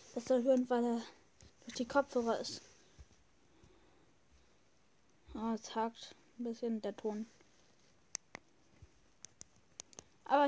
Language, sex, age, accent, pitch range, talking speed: German, female, 10-29, German, 230-275 Hz, 95 wpm